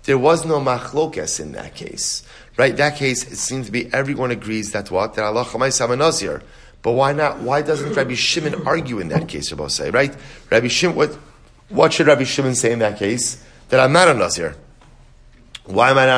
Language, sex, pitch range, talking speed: English, male, 125-150 Hz, 215 wpm